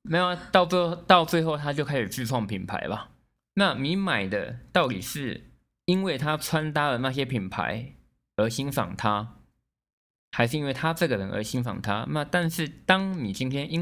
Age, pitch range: 20-39, 100-140 Hz